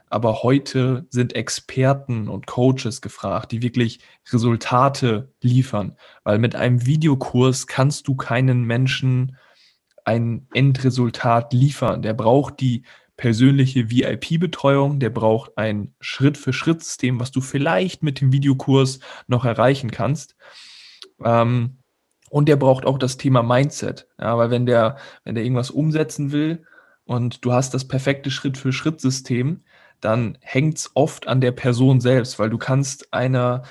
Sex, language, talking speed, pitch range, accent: male, German, 130 wpm, 120-135 Hz, German